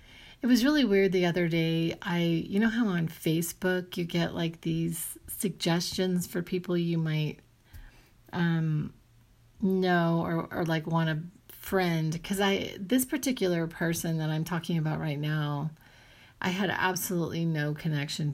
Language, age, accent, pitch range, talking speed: English, 40-59, American, 155-185 Hz, 150 wpm